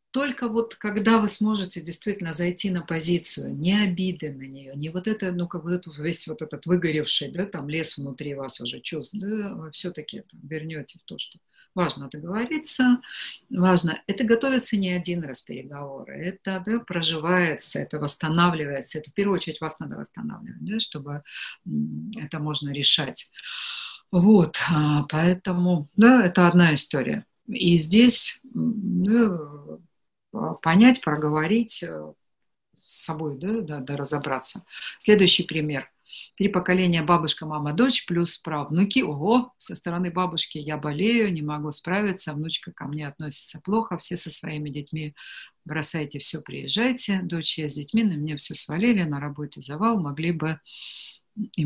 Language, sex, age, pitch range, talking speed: Russian, female, 50-69, 155-200 Hz, 140 wpm